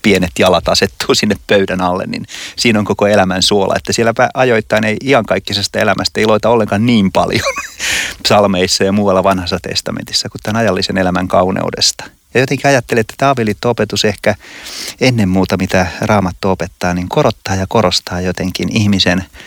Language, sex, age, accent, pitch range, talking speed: Finnish, male, 30-49, native, 95-110 Hz, 150 wpm